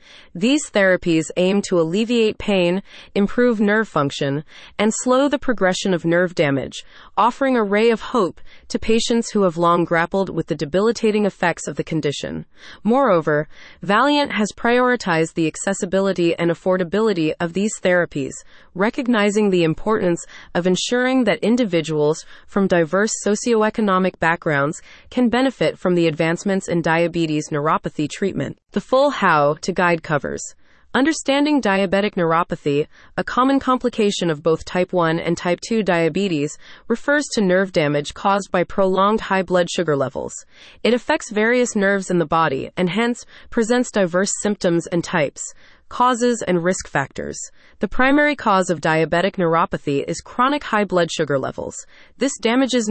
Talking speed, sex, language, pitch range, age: 145 wpm, female, English, 170-225 Hz, 30-49